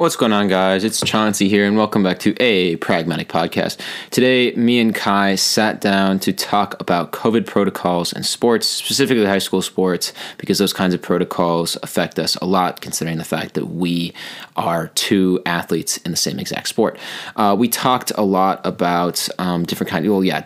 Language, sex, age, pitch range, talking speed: English, male, 20-39, 90-100 Hz, 190 wpm